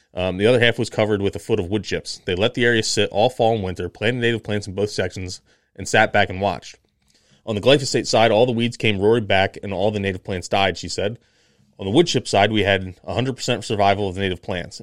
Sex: male